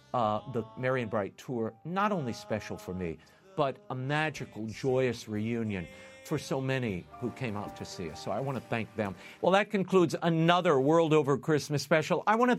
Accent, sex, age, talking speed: American, male, 50-69, 200 wpm